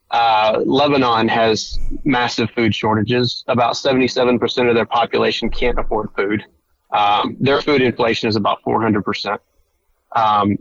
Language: English